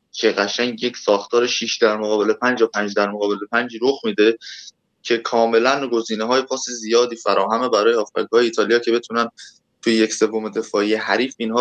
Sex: male